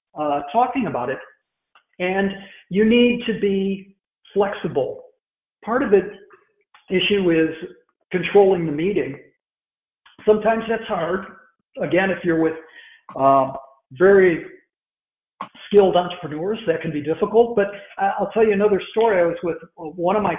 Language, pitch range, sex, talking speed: English, 165-225 Hz, male, 130 wpm